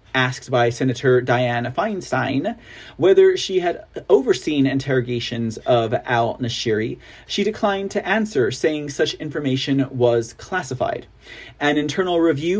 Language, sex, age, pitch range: English, male, 30-49, 130-195 Hz